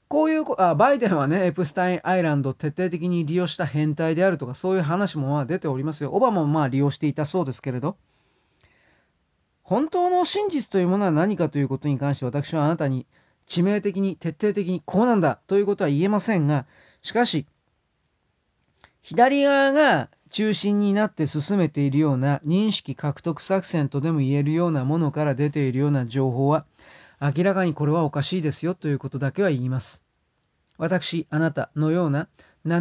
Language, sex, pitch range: Japanese, male, 145-185 Hz